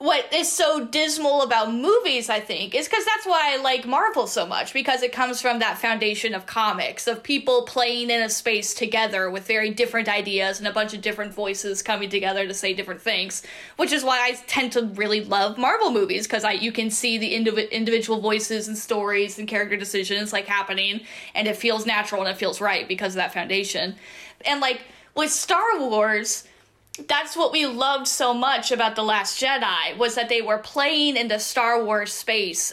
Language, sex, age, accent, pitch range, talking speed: English, female, 10-29, American, 210-250 Hz, 200 wpm